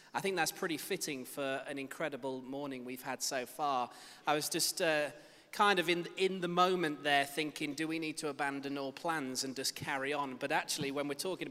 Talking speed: 215 wpm